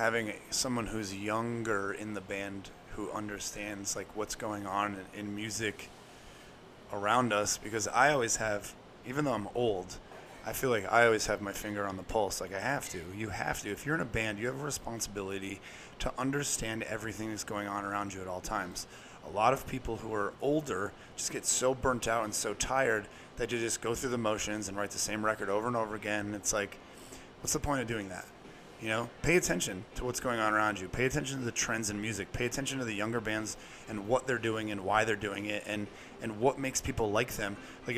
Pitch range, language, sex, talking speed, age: 105-120 Hz, English, male, 225 wpm, 30-49